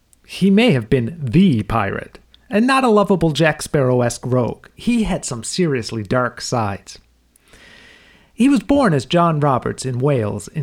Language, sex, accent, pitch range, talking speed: English, male, American, 120-175 Hz, 160 wpm